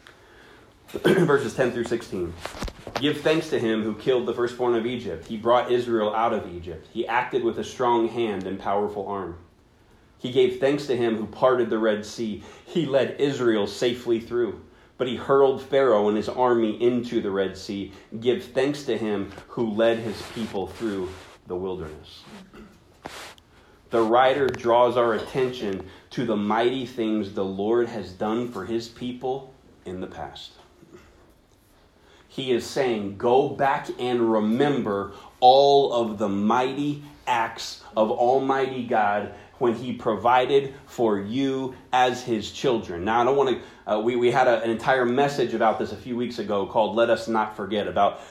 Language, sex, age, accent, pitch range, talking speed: English, male, 30-49, American, 105-125 Hz, 165 wpm